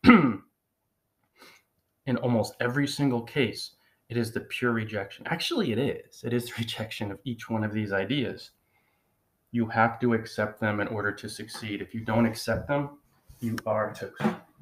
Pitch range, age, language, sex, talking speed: 100-120 Hz, 30-49, English, male, 165 wpm